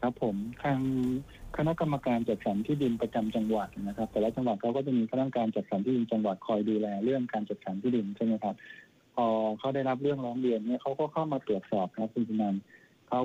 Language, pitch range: Thai, 110-130 Hz